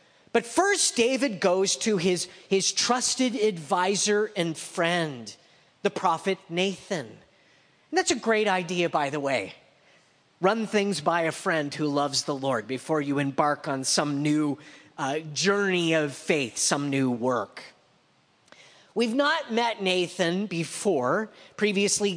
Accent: American